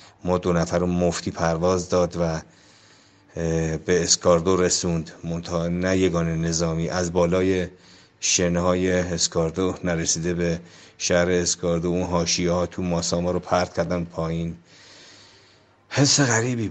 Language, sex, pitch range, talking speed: Persian, male, 85-95 Hz, 120 wpm